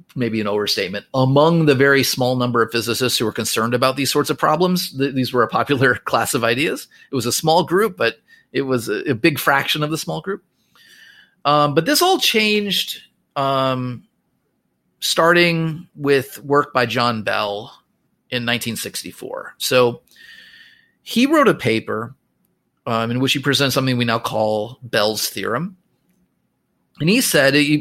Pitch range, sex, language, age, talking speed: 120-165 Hz, male, English, 30-49, 160 wpm